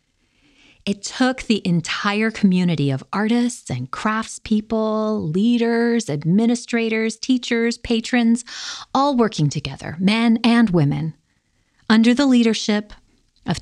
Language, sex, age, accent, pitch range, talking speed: English, female, 30-49, American, 145-215 Hz, 100 wpm